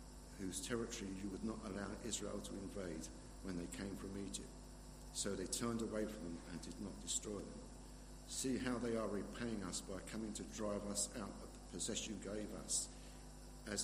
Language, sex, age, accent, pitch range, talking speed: English, male, 60-79, British, 100-115 Hz, 190 wpm